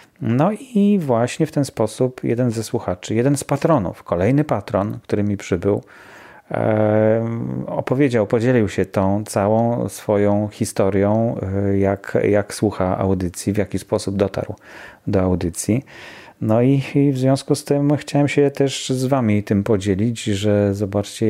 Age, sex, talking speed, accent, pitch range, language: 40-59, male, 140 wpm, native, 100-125 Hz, Polish